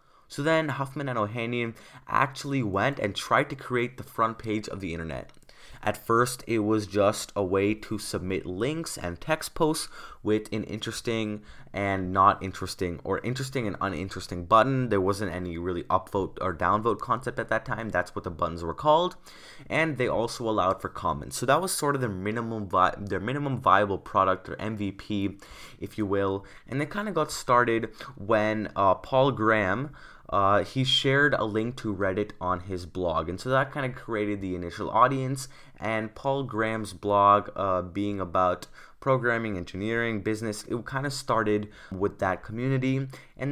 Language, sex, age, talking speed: English, male, 20-39, 175 wpm